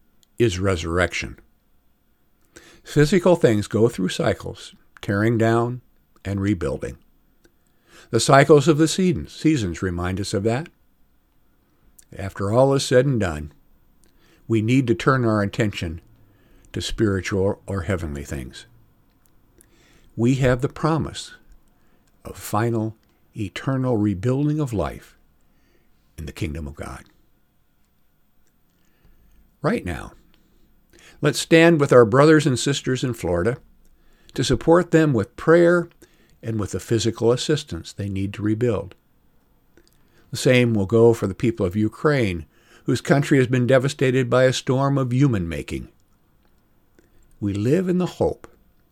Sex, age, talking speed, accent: male, 60-79, 125 wpm, American